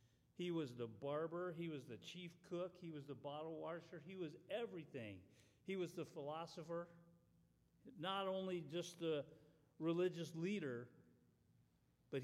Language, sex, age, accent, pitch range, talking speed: English, male, 50-69, American, 135-190 Hz, 135 wpm